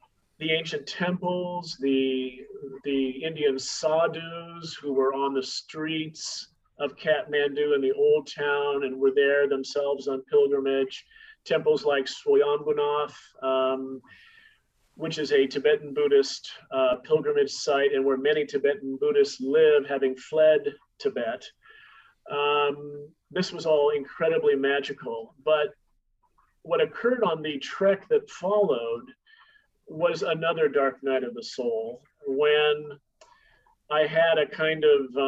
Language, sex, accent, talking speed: English, male, American, 120 wpm